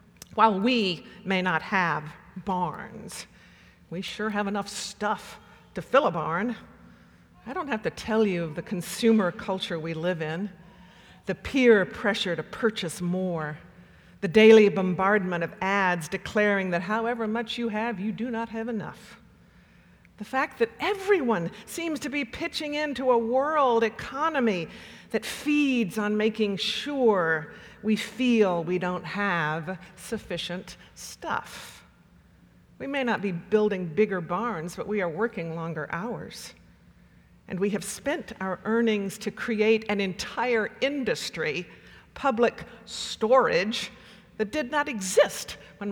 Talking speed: 135 wpm